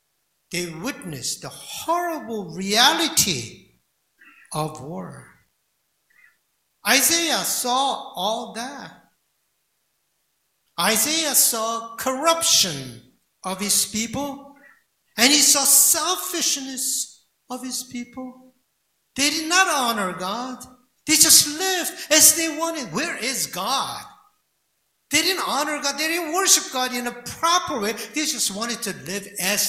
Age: 60-79